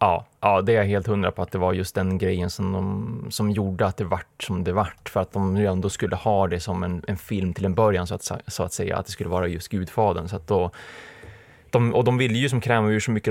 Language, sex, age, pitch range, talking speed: Swedish, male, 20-39, 95-105 Hz, 280 wpm